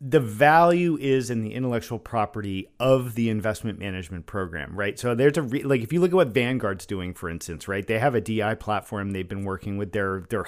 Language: English